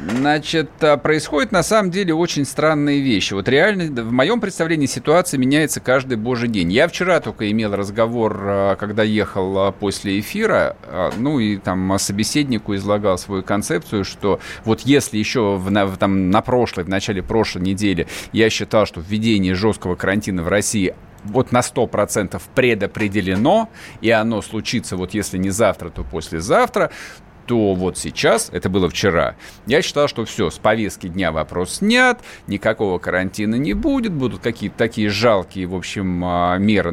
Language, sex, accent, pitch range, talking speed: Russian, male, native, 95-120 Hz, 150 wpm